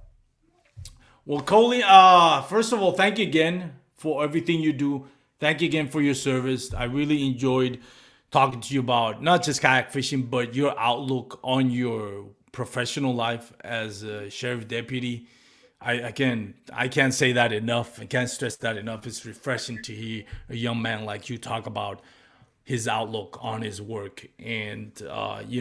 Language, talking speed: English, 170 wpm